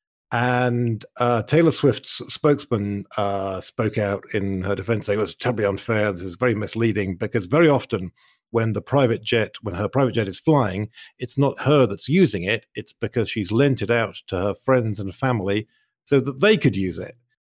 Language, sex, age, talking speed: English, male, 50-69, 195 wpm